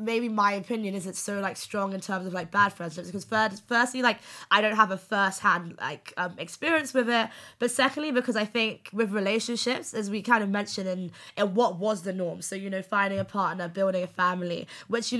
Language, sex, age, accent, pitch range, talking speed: English, female, 20-39, British, 190-230 Hz, 225 wpm